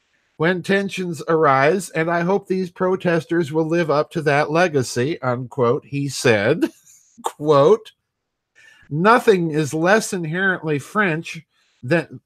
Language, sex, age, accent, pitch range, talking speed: English, male, 50-69, American, 150-185 Hz, 115 wpm